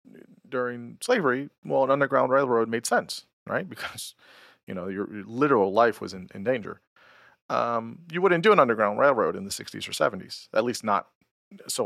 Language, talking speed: English, 180 wpm